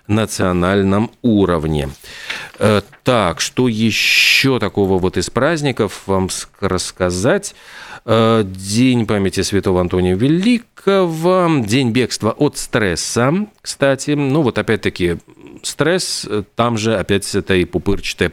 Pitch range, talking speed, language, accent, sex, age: 95-135 Hz, 100 wpm, Russian, native, male, 40-59